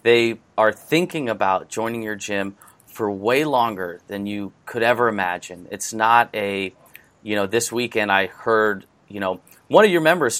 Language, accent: English, American